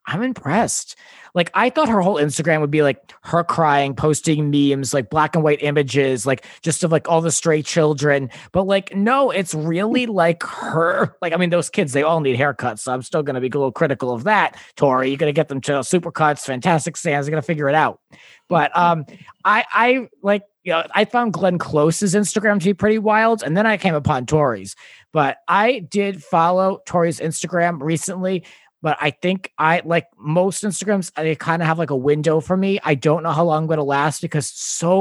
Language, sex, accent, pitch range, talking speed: English, male, American, 150-195 Hz, 210 wpm